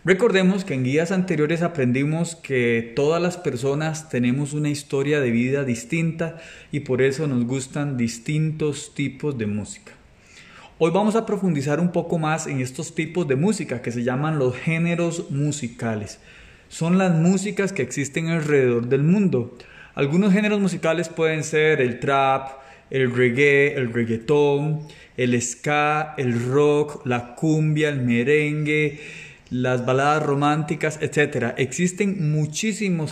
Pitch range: 135-175 Hz